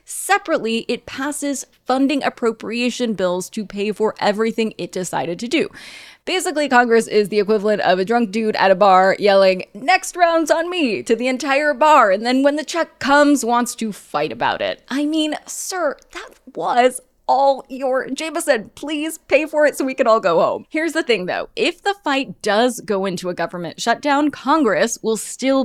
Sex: female